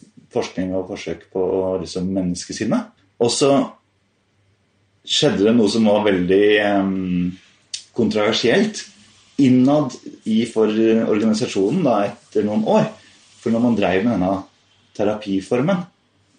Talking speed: 115 wpm